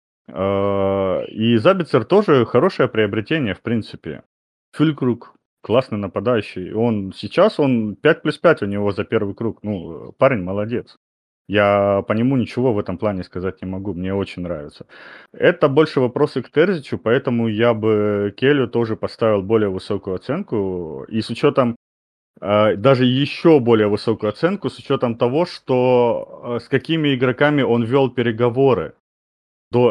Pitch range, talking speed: 100-125 Hz, 140 wpm